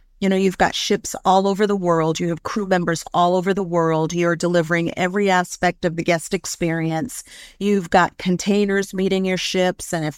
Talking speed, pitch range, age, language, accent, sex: 195 wpm, 175-195 Hz, 50-69, English, American, female